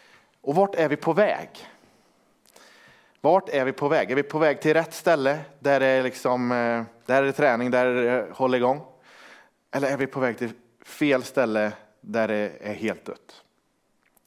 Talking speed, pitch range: 180 wpm, 120-160 Hz